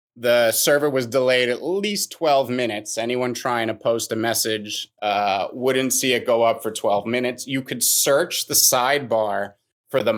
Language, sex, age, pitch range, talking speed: English, male, 30-49, 115-135 Hz, 175 wpm